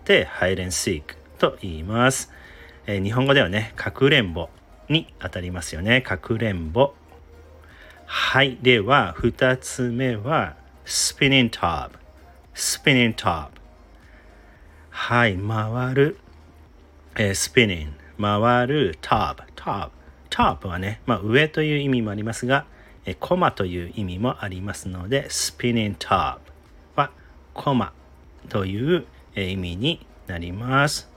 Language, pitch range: Japanese, 80-120 Hz